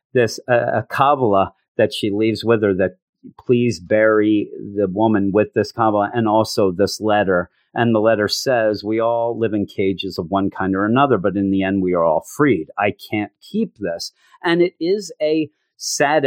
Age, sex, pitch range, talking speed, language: 40-59, male, 105-145 Hz, 190 wpm, English